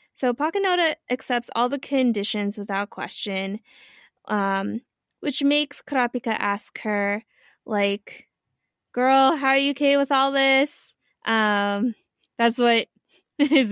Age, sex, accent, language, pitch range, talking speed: 20-39, female, American, English, 215-270 Hz, 120 wpm